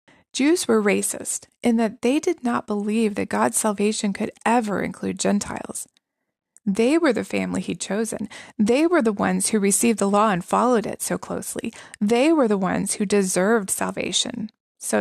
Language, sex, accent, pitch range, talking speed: English, female, American, 205-255 Hz, 170 wpm